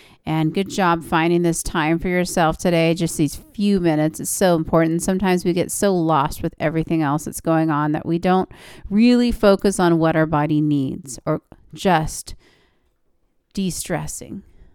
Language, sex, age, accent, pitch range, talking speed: English, female, 40-59, American, 160-190 Hz, 165 wpm